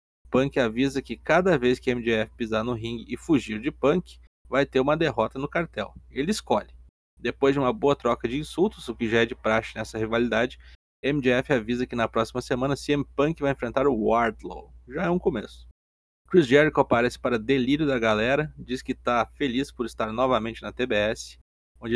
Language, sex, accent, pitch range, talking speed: Portuguese, male, Brazilian, 110-135 Hz, 190 wpm